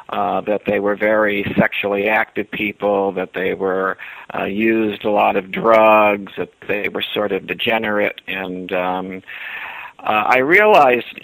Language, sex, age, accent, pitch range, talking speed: English, male, 50-69, American, 100-115 Hz, 150 wpm